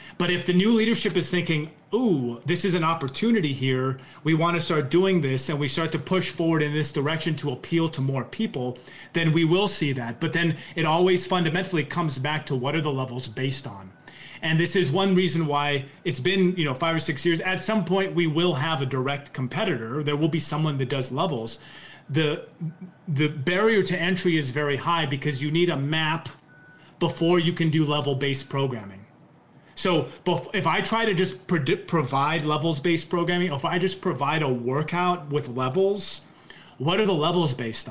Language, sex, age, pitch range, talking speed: English, male, 30-49, 145-180 Hz, 195 wpm